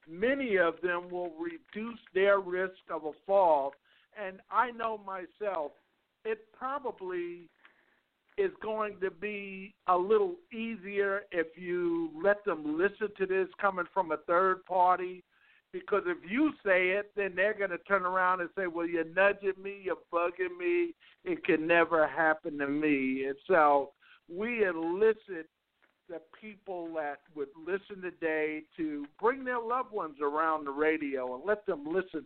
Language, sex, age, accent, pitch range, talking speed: English, male, 60-79, American, 170-220 Hz, 155 wpm